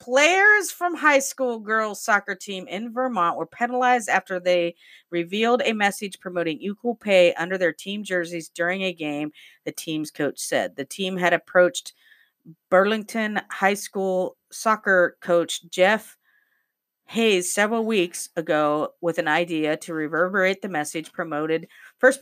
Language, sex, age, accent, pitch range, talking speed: English, female, 40-59, American, 170-245 Hz, 145 wpm